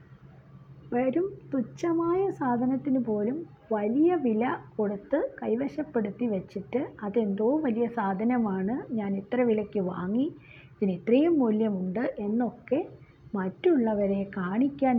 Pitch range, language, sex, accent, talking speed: 175-250 Hz, Malayalam, female, native, 90 wpm